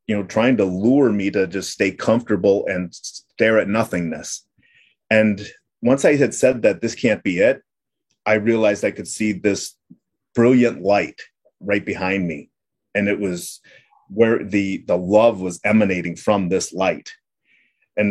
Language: English